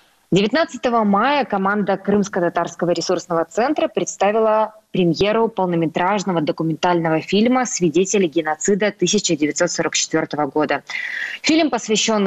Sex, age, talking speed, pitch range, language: female, 20-39, 85 wpm, 170-220 Hz, Russian